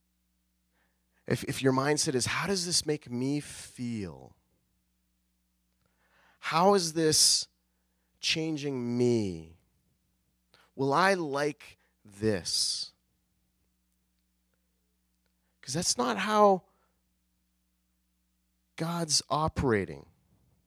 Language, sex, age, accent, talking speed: English, male, 30-49, American, 75 wpm